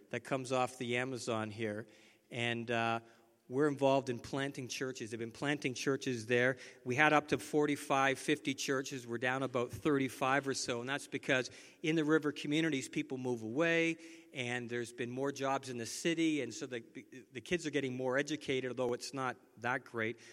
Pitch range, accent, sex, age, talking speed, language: 115-140 Hz, American, male, 50-69, 185 wpm, English